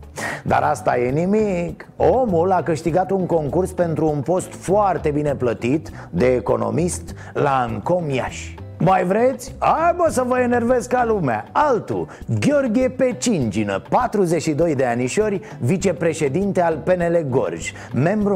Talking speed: 125 wpm